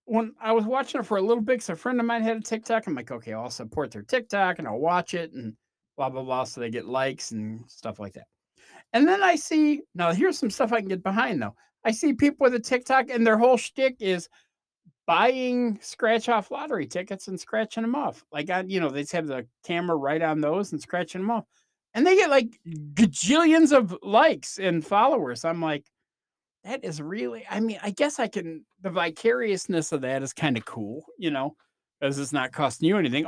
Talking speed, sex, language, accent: 225 wpm, male, English, American